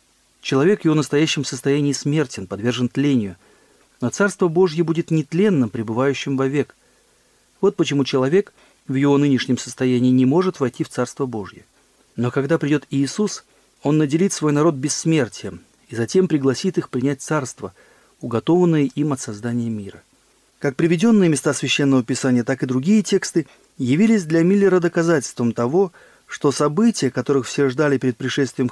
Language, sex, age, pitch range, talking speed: Russian, male, 40-59, 125-160 Hz, 145 wpm